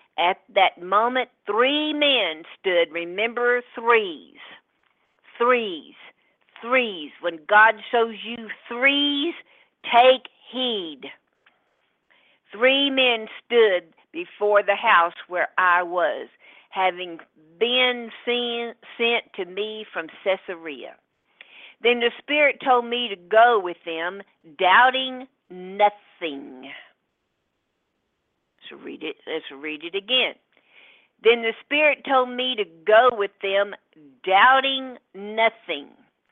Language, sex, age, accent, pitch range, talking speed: English, female, 50-69, American, 195-255 Hz, 105 wpm